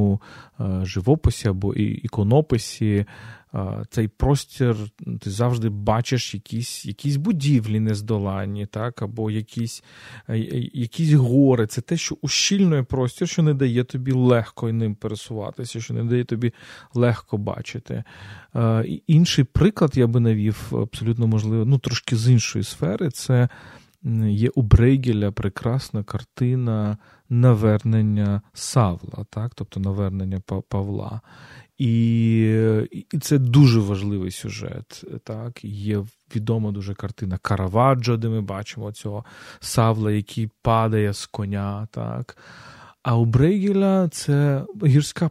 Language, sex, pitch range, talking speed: Ukrainian, male, 105-130 Hz, 115 wpm